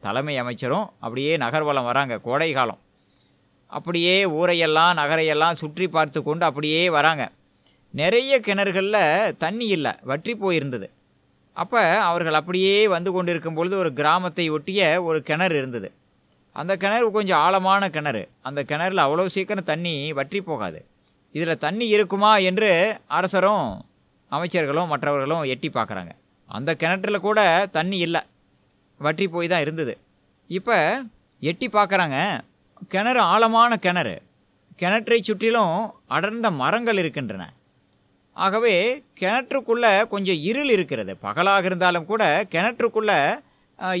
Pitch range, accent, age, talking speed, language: 160-205 Hz, native, 20-39, 115 wpm, Tamil